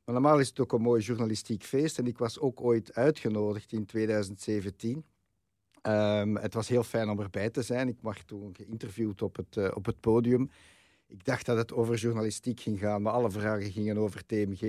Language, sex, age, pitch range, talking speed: Dutch, male, 50-69, 105-125 Hz, 205 wpm